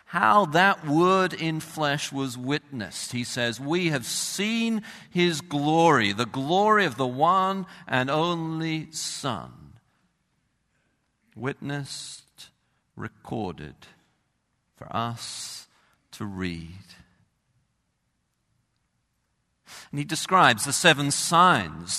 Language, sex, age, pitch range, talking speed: English, male, 50-69, 115-175 Hz, 95 wpm